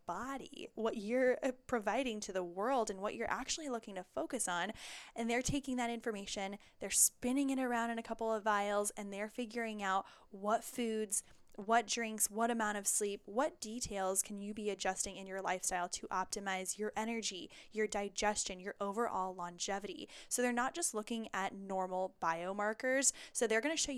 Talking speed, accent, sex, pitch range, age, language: 180 wpm, American, female, 190-230 Hz, 10-29, English